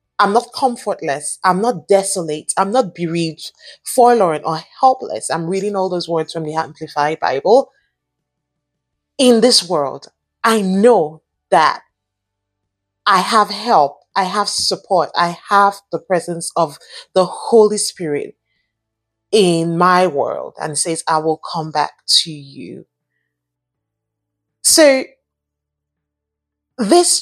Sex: female